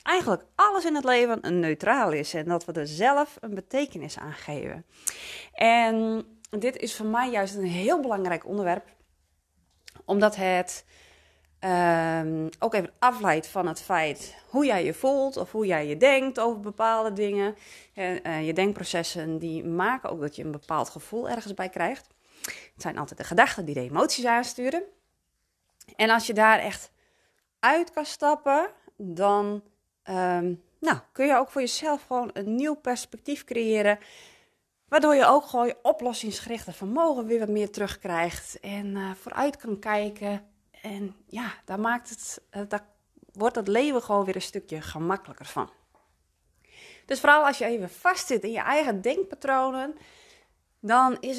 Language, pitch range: Dutch, 185-255 Hz